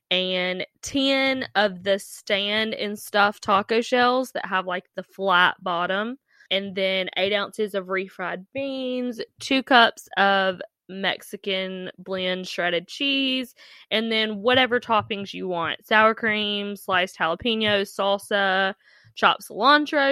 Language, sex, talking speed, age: English, female, 125 wpm, 10-29